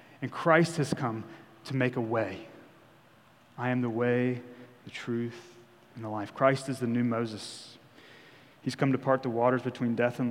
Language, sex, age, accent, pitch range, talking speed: English, male, 30-49, American, 120-140 Hz, 180 wpm